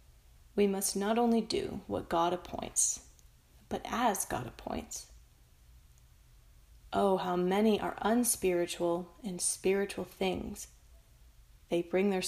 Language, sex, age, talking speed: English, female, 30-49, 110 wpm